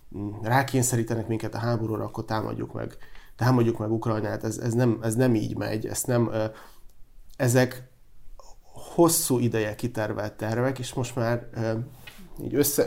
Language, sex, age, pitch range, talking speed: Hungarian, male, 30-49, 110-125 Hz, 140 wpm